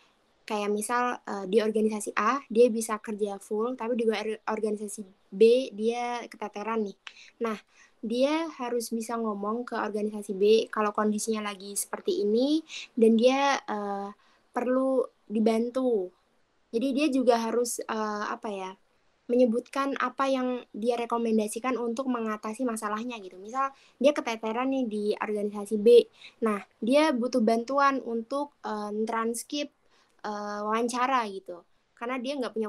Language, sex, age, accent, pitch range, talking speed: Indonesian, female, 20-39, native, 215-250 Hz, 130 wpm